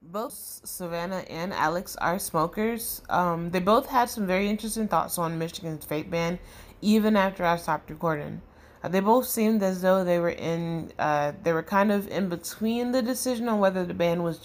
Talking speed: 190 wpm